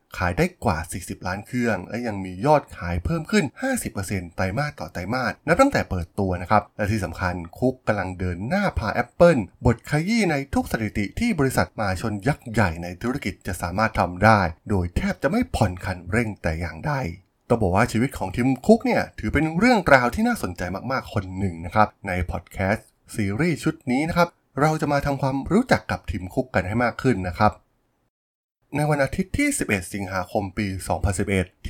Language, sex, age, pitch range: Thai, male, 20-39, 95-130 Hz